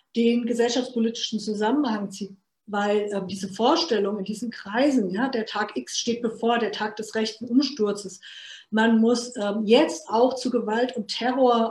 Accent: German